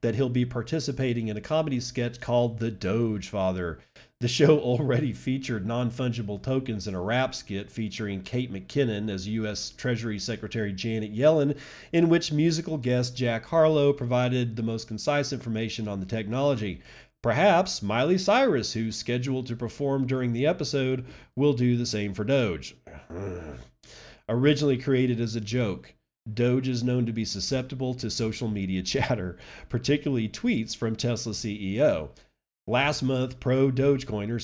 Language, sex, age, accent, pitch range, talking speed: English, male, 40-59, American, 110-130 Hz, 145 wpm